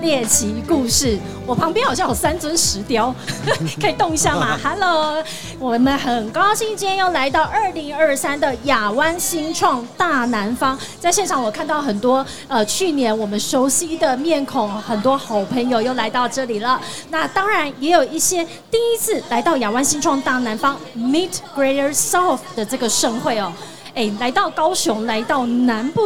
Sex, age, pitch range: female, 30-49, 225-315 Hz